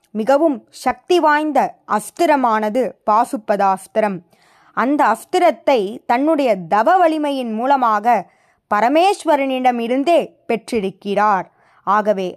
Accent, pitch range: native, 200-280 Hz